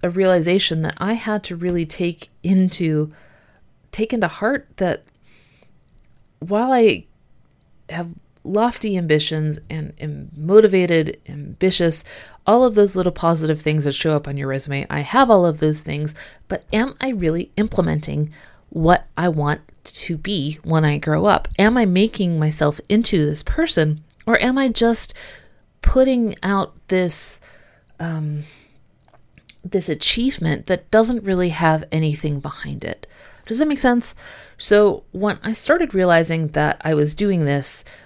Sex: female